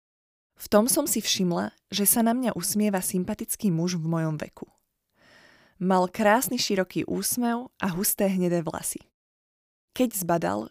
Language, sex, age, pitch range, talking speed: Slovak, female, 20-39, 180-220 Hz, 140 wpm